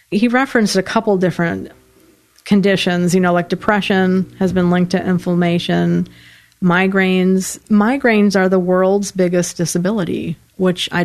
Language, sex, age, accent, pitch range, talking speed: English, female, 40-59, American, 170-195 Hz, 130 wpm